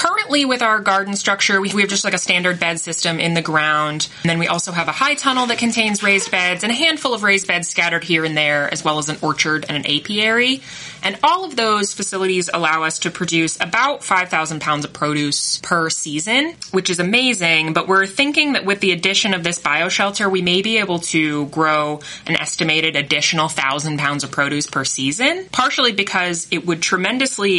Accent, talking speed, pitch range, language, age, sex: American, 210 wpm, 155-200 Hz, English, 20-39, female